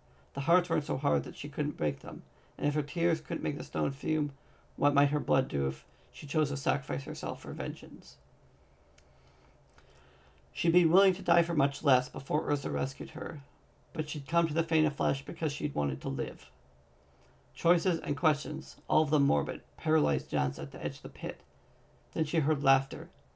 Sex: male